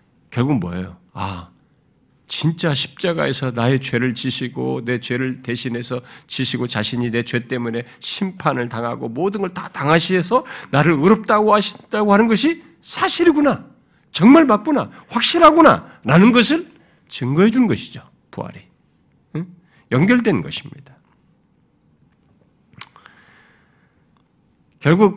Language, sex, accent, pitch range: Korean, male, native, 120-185 Hz